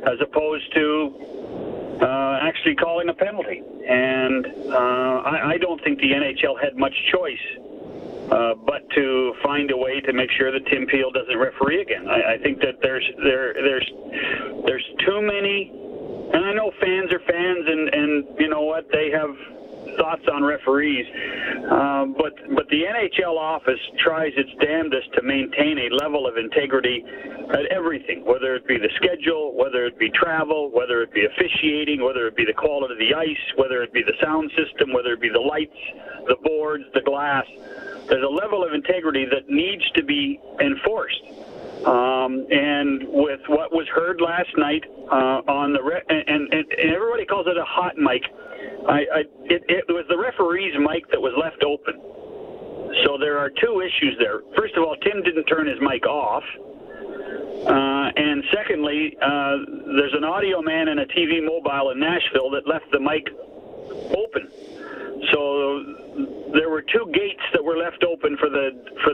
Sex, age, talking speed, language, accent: male, 50-69, 175 wpm, English, American